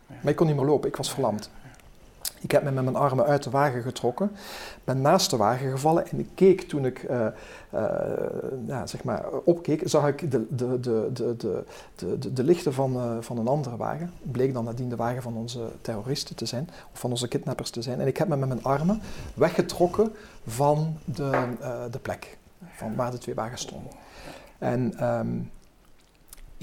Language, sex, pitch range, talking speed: Dutch, male, 125-160 Hz, 200 wpm